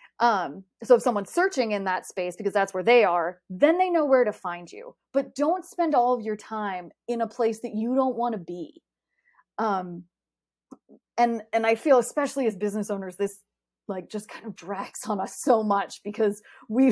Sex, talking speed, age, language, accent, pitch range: female, 190 wpm, 30-49, English, American, 195-250 Hz